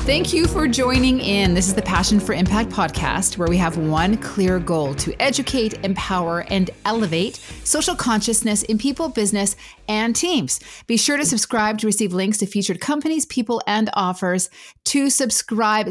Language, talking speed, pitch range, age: English, 170 wpm, 185-245 Hz, 30-49